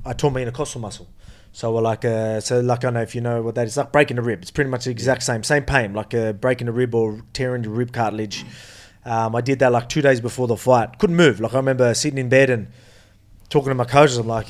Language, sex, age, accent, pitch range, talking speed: English, male, 20-39, Australian, 120-145 Hz, 280 wpm